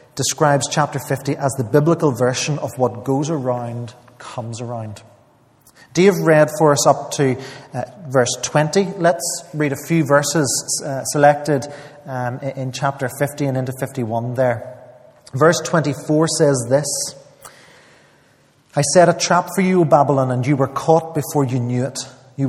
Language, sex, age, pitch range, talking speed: English, male, 30-49, 130-160 Hz, 155 wpm